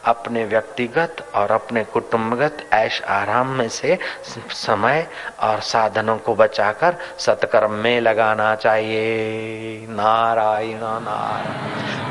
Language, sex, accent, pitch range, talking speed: Hindi, male, native, 125-175 Hz, 100 wpm